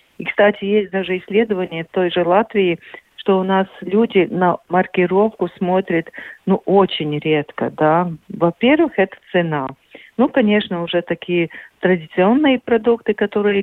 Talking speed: 130 wpm